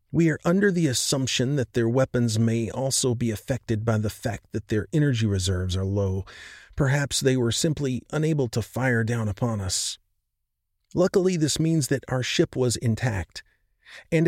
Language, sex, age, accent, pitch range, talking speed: English, male, 40-59, American, 110-140 Hz, 170 wpm